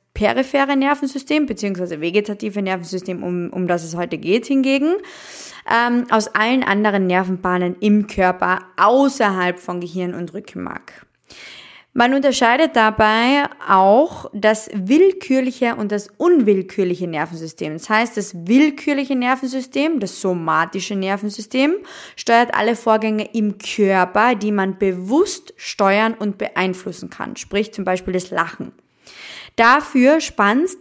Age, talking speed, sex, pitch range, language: 20-39, 120 wpm, female, 185-255 Hz, German